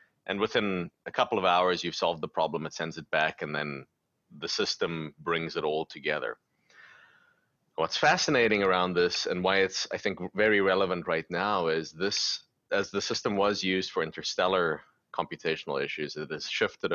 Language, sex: English, male